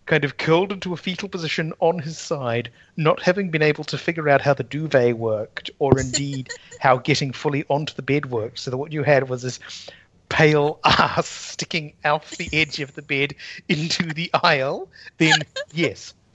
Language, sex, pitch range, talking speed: English, male, 125-165 Hz, 185 wpm